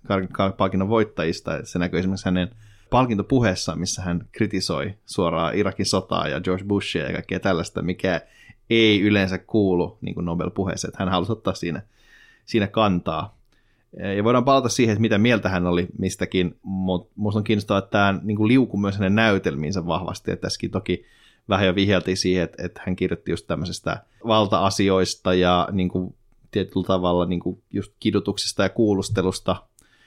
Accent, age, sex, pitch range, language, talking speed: native, 20-39, male, 90-105 Hz, Finnish, 140 wpm